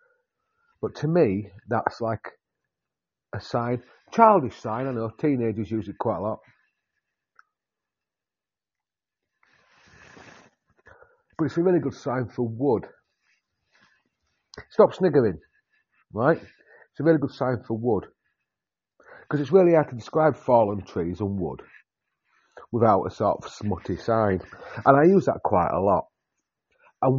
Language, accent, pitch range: English, British, 100-150 Hz